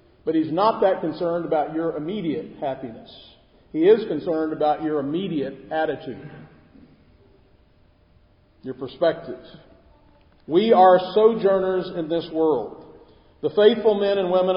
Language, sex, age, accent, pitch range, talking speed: English, male, 50-69, American, 145-185 Hz, 120 wpm